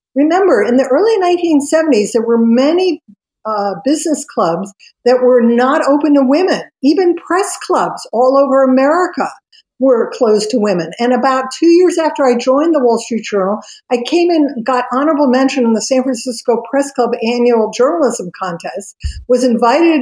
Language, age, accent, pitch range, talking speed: English, 50-69, American, 230-285 Hz, 165 wpm